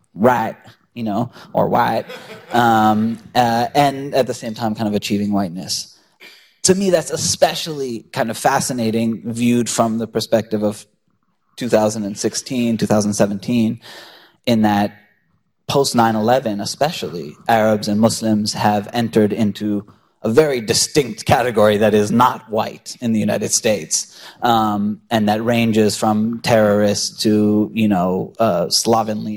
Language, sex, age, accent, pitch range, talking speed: English, male, 30-49, American, 105-120 Hz, 130 wpm